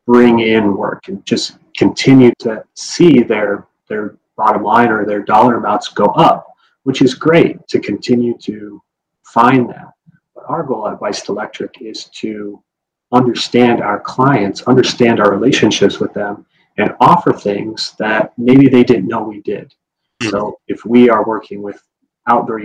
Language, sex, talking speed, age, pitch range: English, male, 155 wpm, 30-49, 110-125 Hz